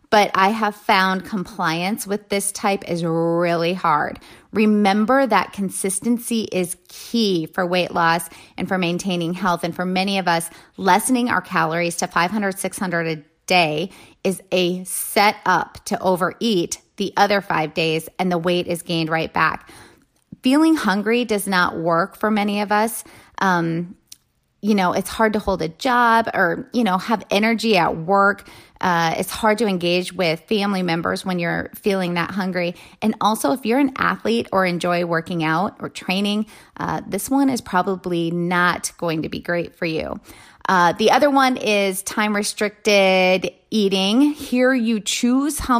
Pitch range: 175-215 Hz